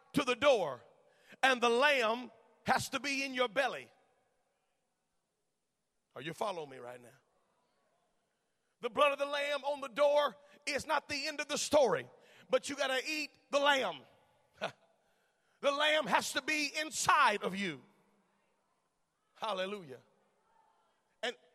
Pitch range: 220-290 Hz